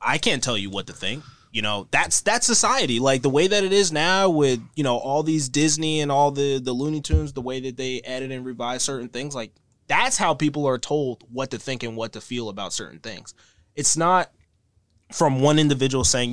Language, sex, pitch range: English, male, 115-155 Hz